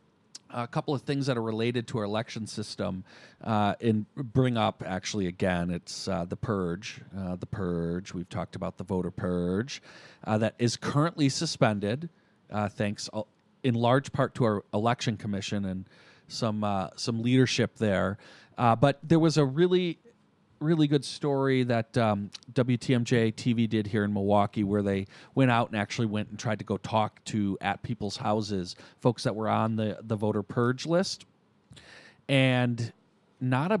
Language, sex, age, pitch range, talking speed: English, male, 40-59, 105-130 Hz, 170 wpm